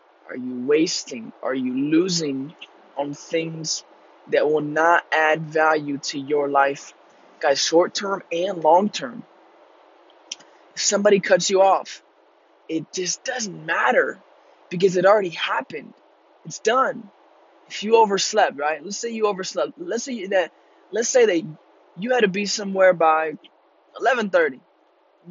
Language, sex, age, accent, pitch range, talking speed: English, male, 20-39, American, 170-225 Hz, 140 wpm